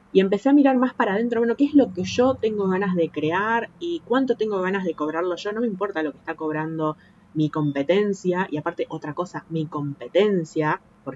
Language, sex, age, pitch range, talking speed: Spanish, female, 20-39, 155-200 Hz, 215 wpm